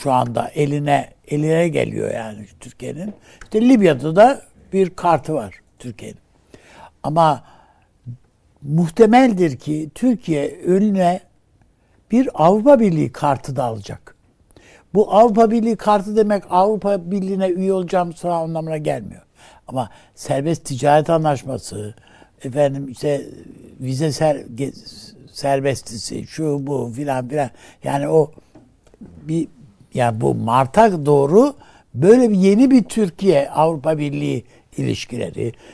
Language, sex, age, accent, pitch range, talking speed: Turkish, male, 60-79, native, 140-195 Hz, 110 wpm